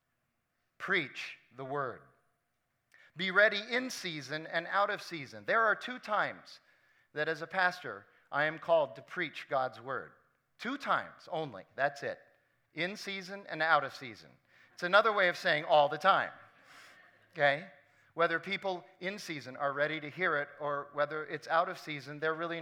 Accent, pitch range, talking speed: American, 145-190 Hz, 165 wpm